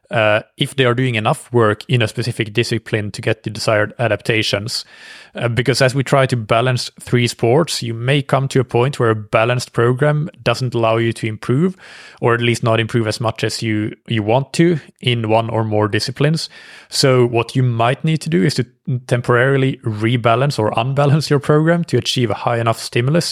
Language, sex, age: English, male, 30-49